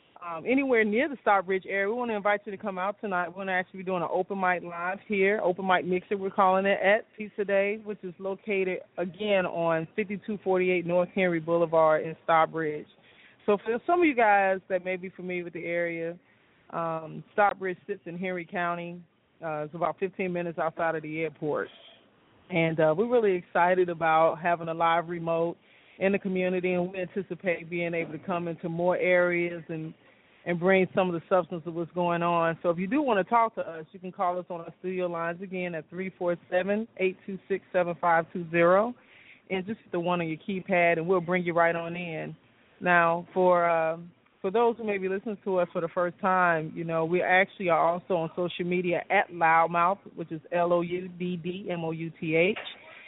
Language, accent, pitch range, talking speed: English, American, 170-195 Hz, 195 wpm